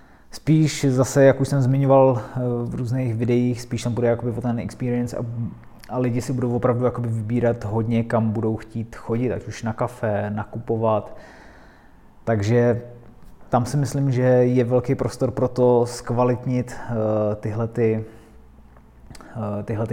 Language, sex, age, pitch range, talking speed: Czech, male, 20-39, 115-130 Hz, 130 wpm